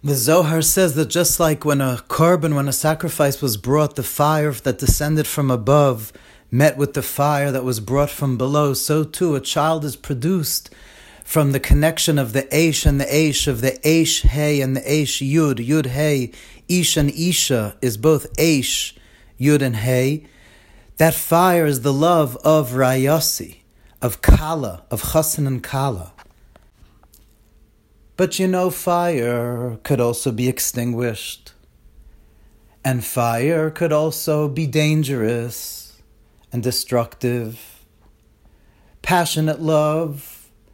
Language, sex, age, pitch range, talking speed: English, male, 30-49, 120-155 Hz, 140 wpm